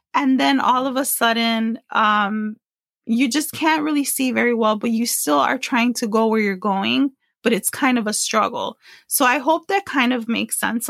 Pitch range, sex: 225-275 Hz, female